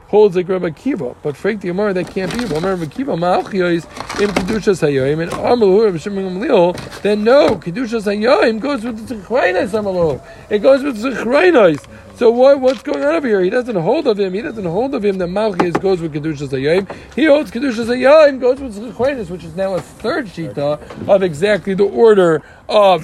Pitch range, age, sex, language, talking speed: 160-220 Hz, 40-59, male, English, 190 wpm